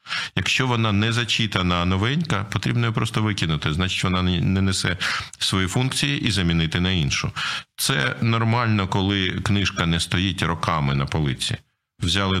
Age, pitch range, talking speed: 50-69, 85-110 Hz, 140 wpm